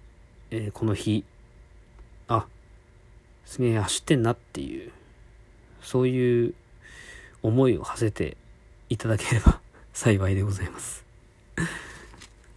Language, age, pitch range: Japanese, 40-59, 105-125 Hz